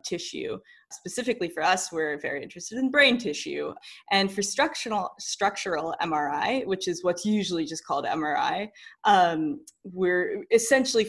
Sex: female